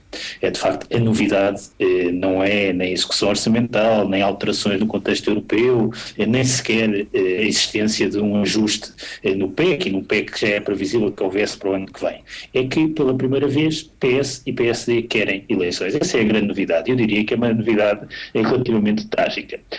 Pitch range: 100-120 Hz